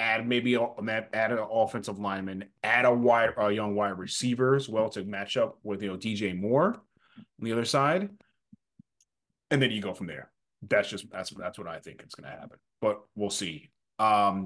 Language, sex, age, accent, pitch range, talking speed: English, male, 30-49, American, 100-135 Hz, 195 wpm